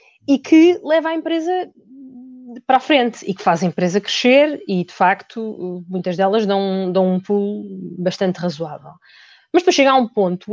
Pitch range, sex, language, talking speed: 205-295 Hz, female, Portuguese, 180 wpm